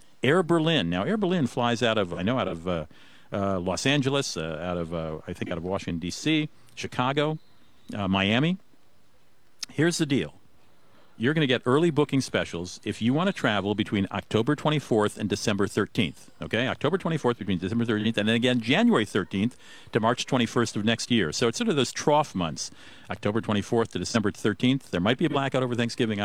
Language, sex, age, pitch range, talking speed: English, male, 50-69, 95-145 Hz, 195 wpm